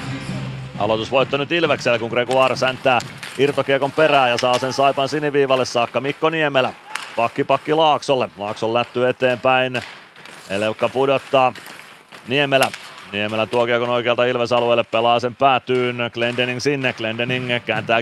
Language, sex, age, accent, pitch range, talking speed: Finnish, male, 30-49, native, 120-135 Hz, 120 wpm